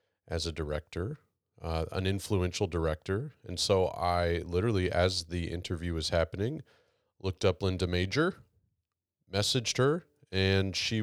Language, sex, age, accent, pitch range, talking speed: English, male, 30-49, American, 90-105 Hz, 130 wpm